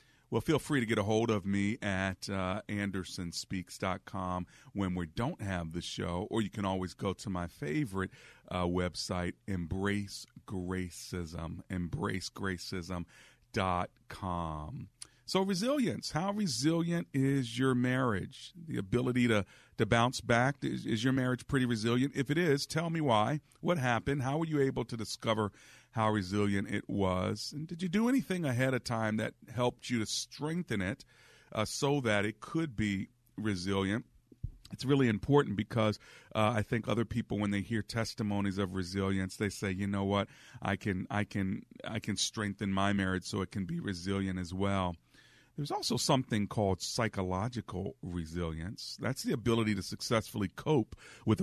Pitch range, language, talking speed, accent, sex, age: 95-125 Hz, English, 160 wpm, American, male, 40-59